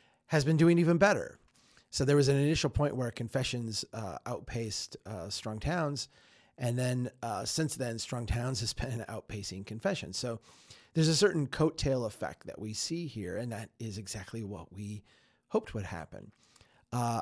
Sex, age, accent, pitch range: male, 30-49, American, 110-140 Hz